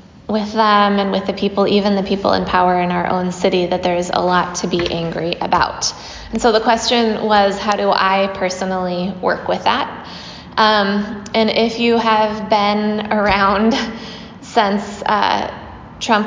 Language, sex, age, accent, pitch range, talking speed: English, female, 20-39, American, 185-215 Hz, 165 wpm